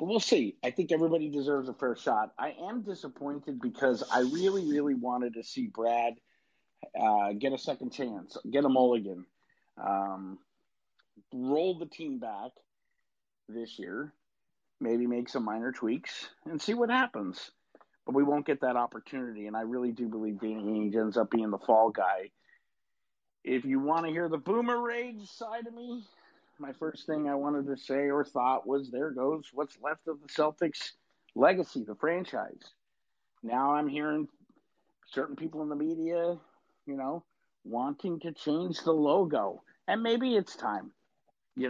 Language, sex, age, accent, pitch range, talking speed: English, male, 50-69, American, 120-165 Hz, 165 wpm